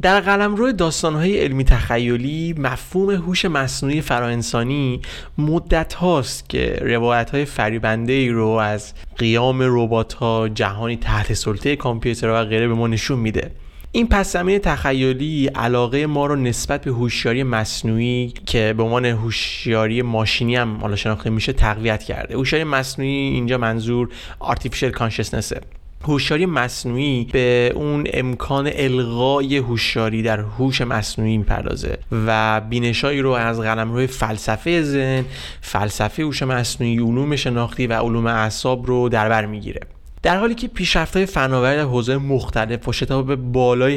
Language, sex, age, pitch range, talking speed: Persian, male, 30-49, 115-140 Hz, 140 wpm